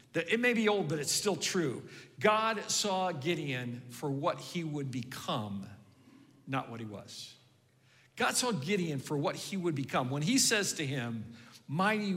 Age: 50-69